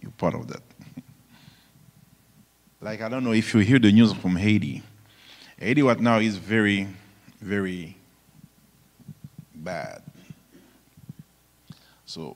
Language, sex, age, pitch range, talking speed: English, male, 50-69, 105-130 Hz, 105 wpm